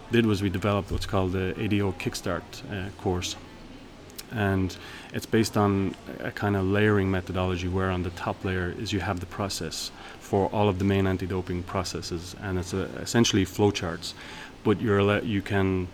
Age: 30-49